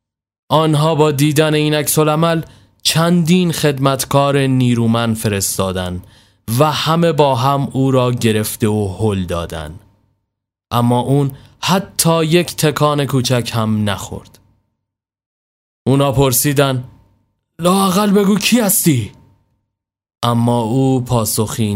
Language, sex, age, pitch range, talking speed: Persian, male, 20-39, 110-155 Hz, 100 wpm